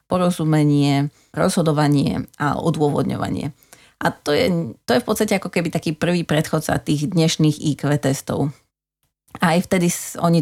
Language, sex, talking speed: Slovak, female, 140 wpm